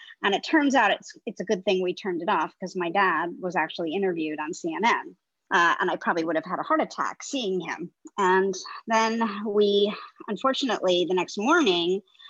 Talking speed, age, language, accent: 195 wpm, 50-69, English, American